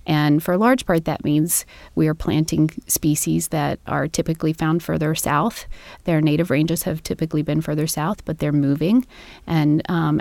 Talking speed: 175 wpm